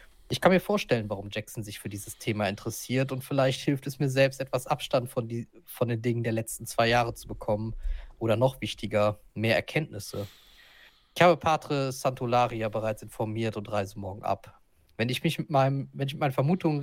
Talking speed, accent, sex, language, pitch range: 180 wpm, German, male, German, 110-135 Hz